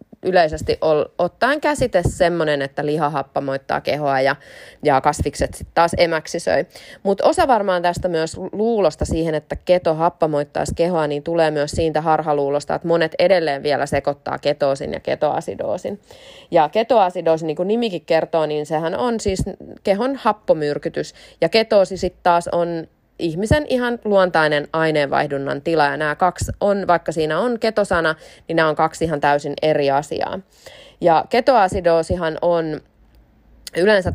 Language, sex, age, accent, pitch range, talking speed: Finnish, female, 20-39, native, 145-185 Hz, 135 wpm